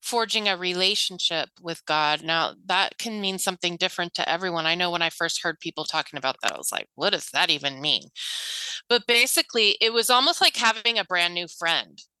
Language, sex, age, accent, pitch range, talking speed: English, female, 30-49, American, 175-225 Hz, 205 wpm